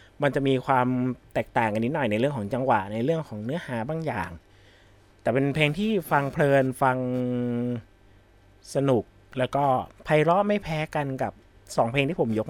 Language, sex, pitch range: Thai, male, 100-150 Hz